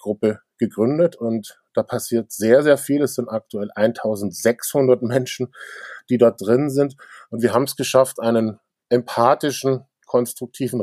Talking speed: 140 wpm